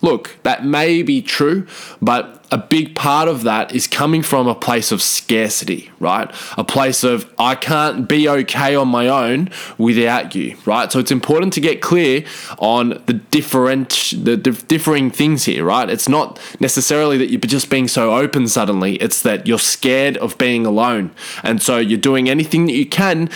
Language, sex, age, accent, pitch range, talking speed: English, male, 20-39, Australian, 105-145 Hz, 180 wpm